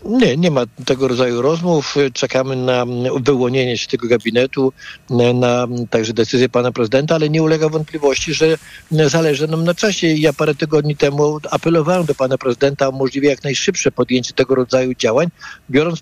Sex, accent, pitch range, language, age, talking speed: male, native, 135-170 Hz, Polish, 50-69, 160 wpm